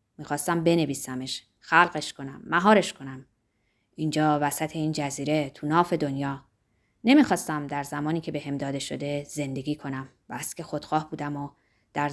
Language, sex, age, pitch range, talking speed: Persian, female, 20-39, 140-175 Hz, 145 wpm